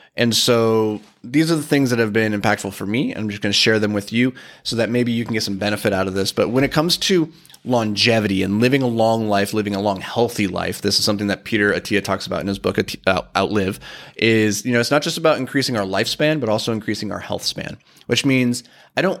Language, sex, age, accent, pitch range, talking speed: English, male, 30-49, American, 105-125 Hz, 245 wpm